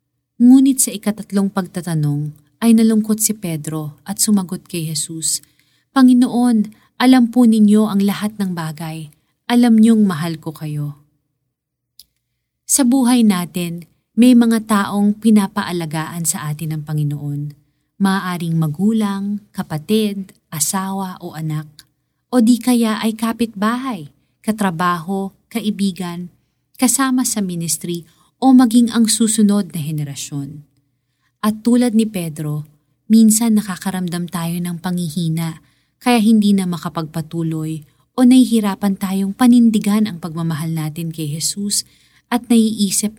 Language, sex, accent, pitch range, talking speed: Filipino, female, native, 155-215 Hz, 115 wpm